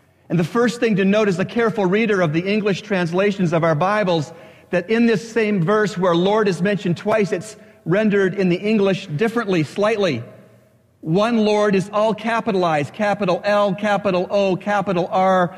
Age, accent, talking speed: 40-59, American, 175 wpm